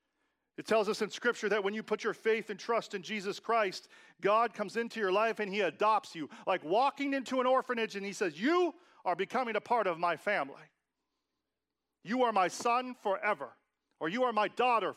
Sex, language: male, English